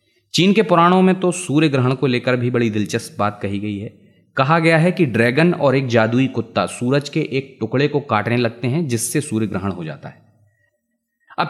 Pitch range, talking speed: 115-160 Hz, 210 wpm